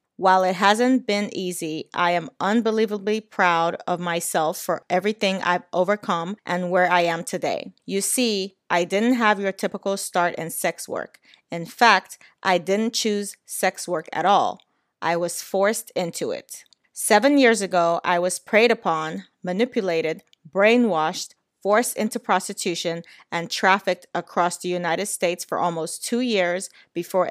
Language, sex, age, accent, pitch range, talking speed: English, female, 30-49, American, 170-205 Hz, 150 wpm